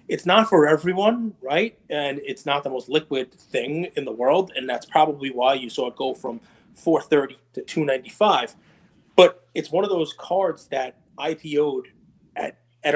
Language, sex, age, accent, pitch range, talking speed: English, male, 30-49, American, 155-215 Hz, 170 wpm